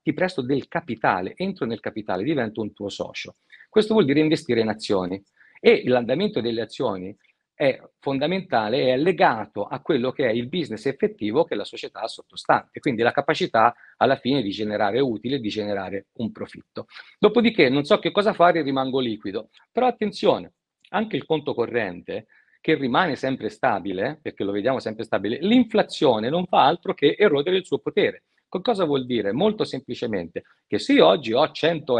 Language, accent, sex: Italian, native, male